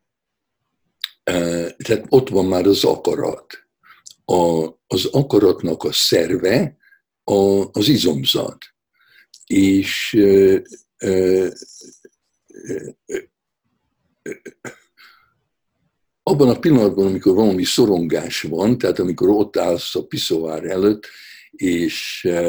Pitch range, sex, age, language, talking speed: 95-125 Hz, male, 60-79, Hungarian, 95 wpm